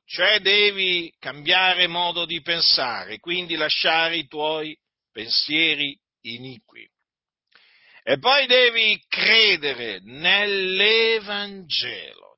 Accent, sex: native, male